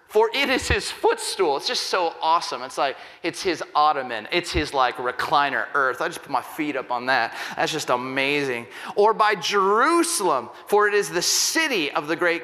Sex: male